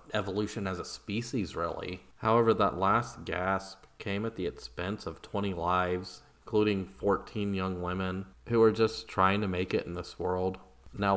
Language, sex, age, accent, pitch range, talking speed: English, male, 30-49, American, 90-100 Hz, 165 wpm